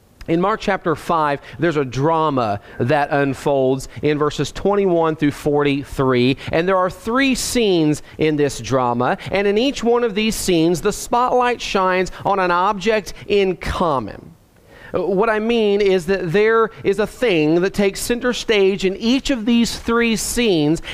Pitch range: 150-210 Hz